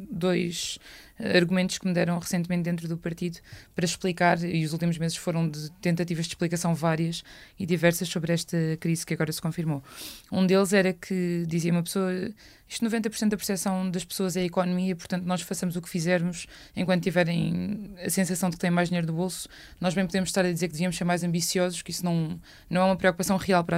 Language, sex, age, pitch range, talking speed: Portuguese, female, 20-39, 175-190 Hz, 205 wpm